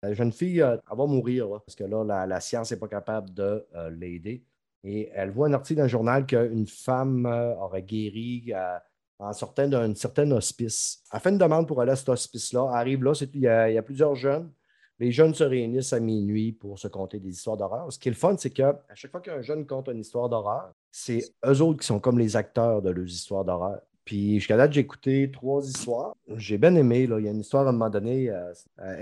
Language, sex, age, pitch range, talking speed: French, male, 30-49, 100-130 Hz, 240 wpm